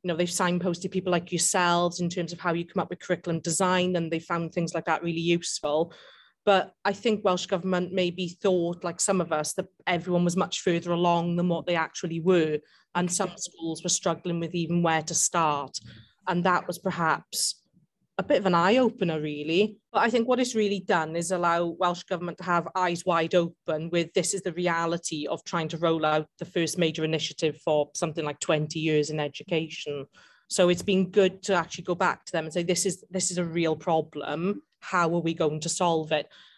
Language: English